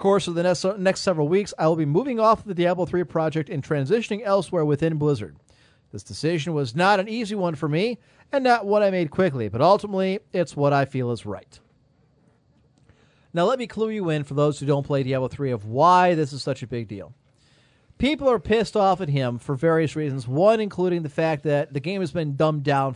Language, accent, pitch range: English, American, 135-180 Hz